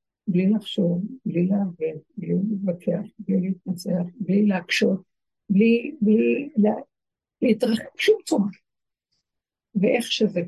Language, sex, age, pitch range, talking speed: Hebrew, female, 60-79, 185-240 Hz, 105 wpm